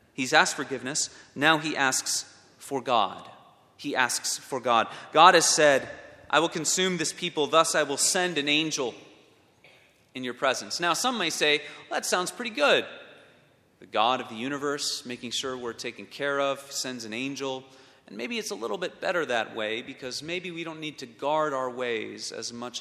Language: English